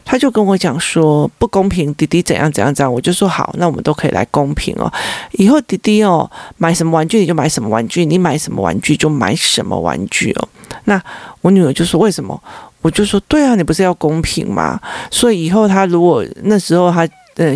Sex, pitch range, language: male, 155-215 Hz, Chinese